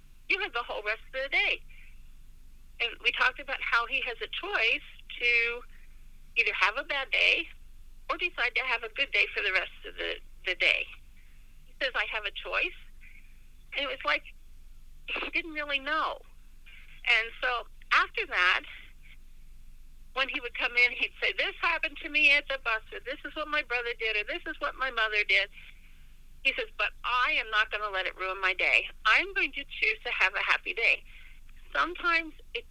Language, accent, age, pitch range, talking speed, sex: English, American, 50-69, 190-295 Hz, 195 wpm, female